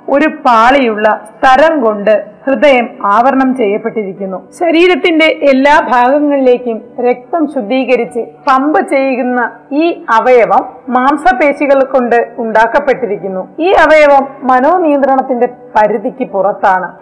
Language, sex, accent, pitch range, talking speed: Malayalam, female, native, 230-290 Hz, 85 wpm